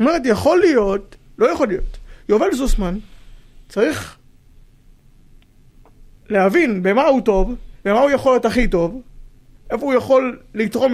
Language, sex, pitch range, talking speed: Hebrew, male, 170-225 Hz, 130 wpm